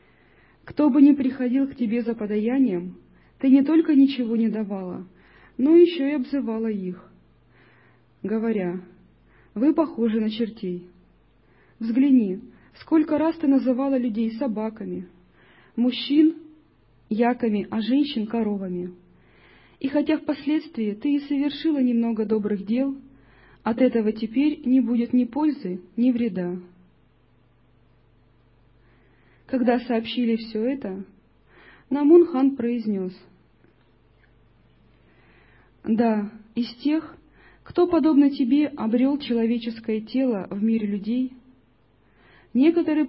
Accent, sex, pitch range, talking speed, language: native, female, 195-275 Hz, 100 wpm, Russian